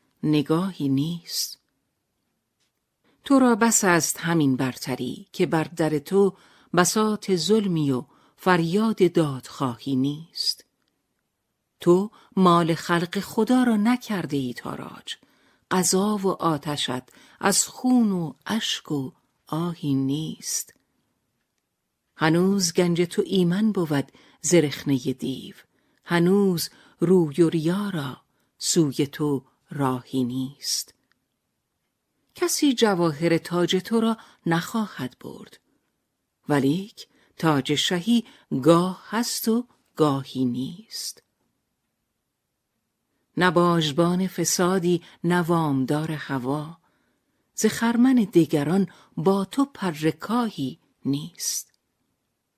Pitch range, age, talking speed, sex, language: 150-195 Hz, 50-69, 90 wpm, female, Persian